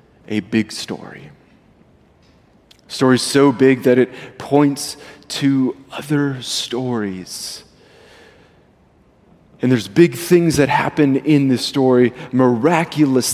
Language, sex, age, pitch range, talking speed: English, male, 30-49, 135-195 Hz, 105 wpm